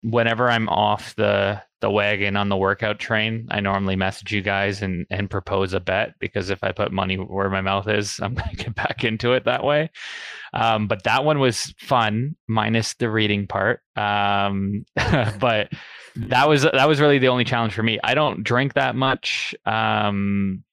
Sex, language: male, English